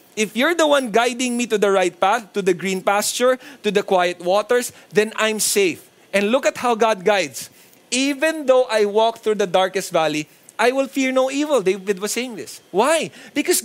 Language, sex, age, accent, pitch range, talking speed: English, male, 20-39, Filipino, 195-255 Hz, 200 wpm